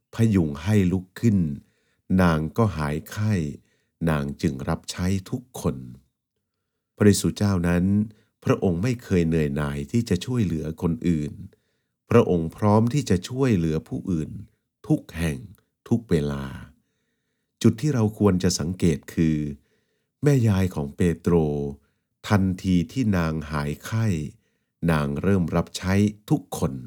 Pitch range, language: 80-110 Hz, English